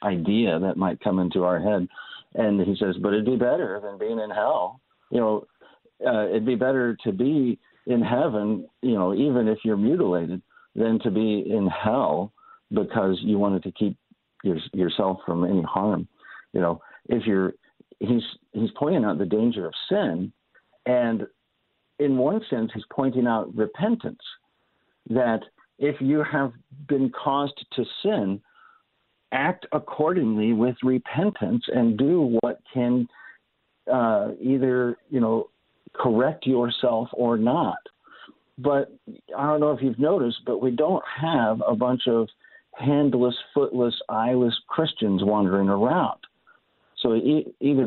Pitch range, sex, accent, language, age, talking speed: 105-135 Hz, male, American, English, 50-69, 145 wpm